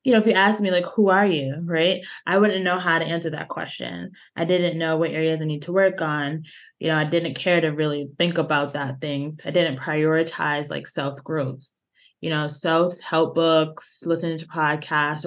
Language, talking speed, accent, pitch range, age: English, 205 wpm, American, 160-195 Hz, 20-39